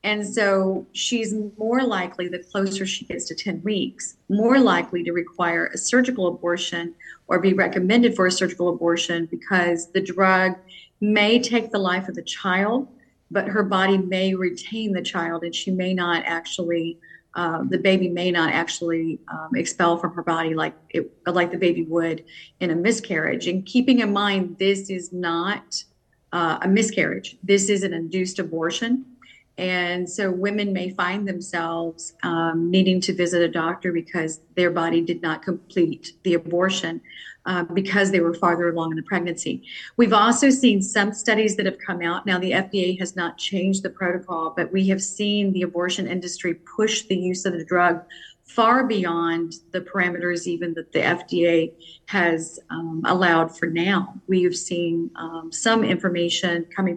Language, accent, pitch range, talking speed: English, American, 170-195 Hz, 170 wpm